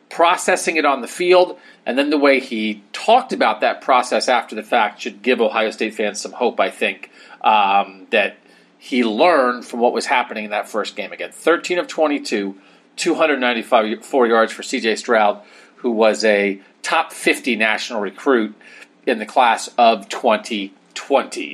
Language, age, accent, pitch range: English, 40-59, American, 120-160 Hz